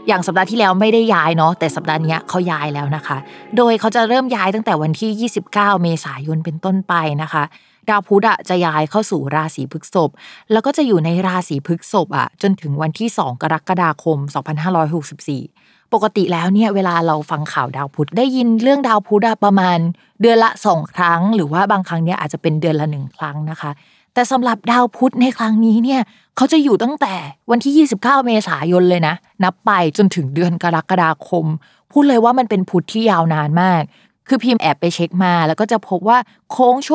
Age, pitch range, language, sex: 20-39, 165-225 Hz, Thai, female